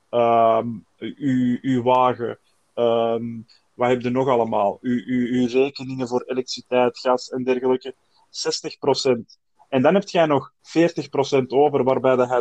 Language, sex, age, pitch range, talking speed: Dutch, male, 20-39, 125-145 Hz, 125 wpm